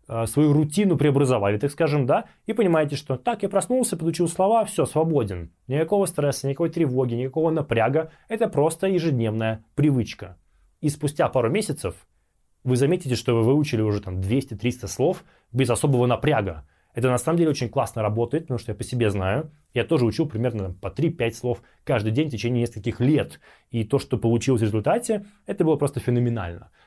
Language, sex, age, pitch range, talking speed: Russian, male, 20-39, 115-155 Hz, 175 wpm